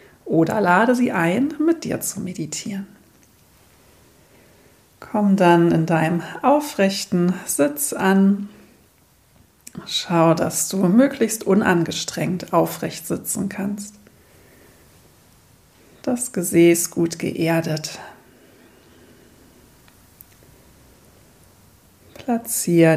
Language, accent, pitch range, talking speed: German, German, 165-200 Hz, 75 wpm